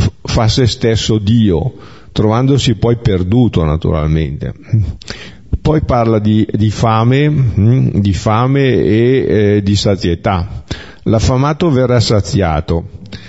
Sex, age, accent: male, 50-69, native